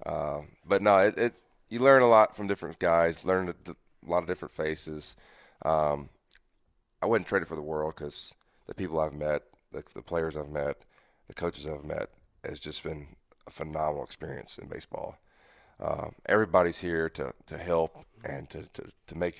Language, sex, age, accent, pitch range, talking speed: English, male, 30-49, American, 80-90 Hz, 185 wpm